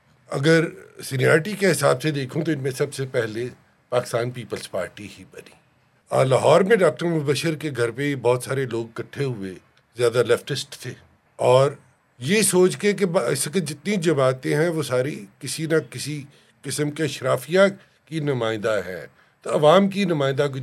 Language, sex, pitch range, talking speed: Urdu, male, 125-160 Hz, 170 wpm